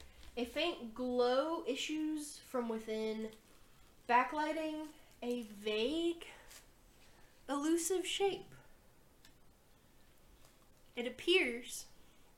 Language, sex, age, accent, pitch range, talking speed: English, female, 10-29, American, 230-280 Hz, 65 wpm